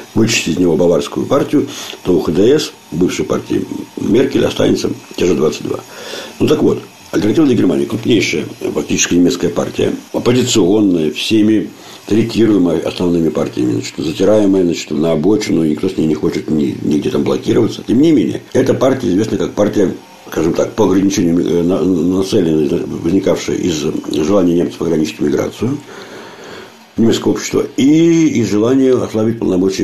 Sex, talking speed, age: male, 140 wpm, 60-79